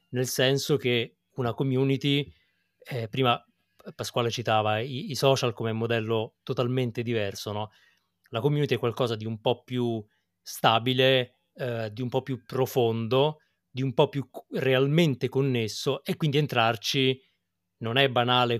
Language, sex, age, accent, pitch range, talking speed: Italian, male, 30-49, native, 115-135 Hz, 140 wpm